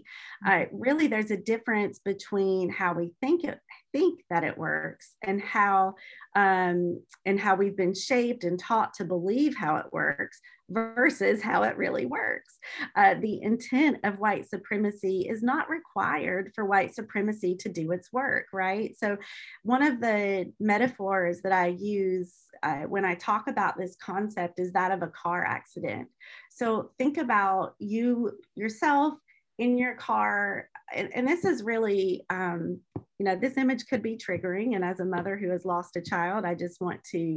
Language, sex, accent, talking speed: English, female, American, 170 wpm